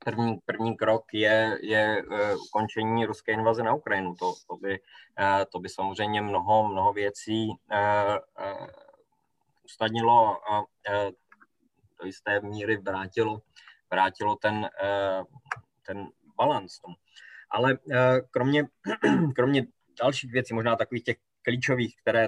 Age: 20-39